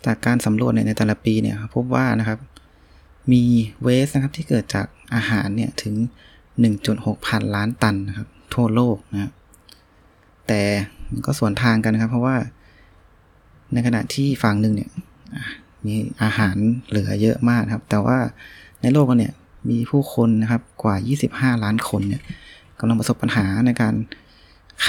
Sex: male